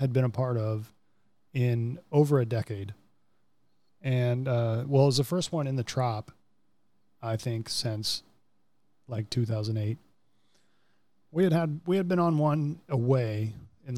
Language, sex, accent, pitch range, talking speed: English, male, American, 115-145 Hz, 150 wpm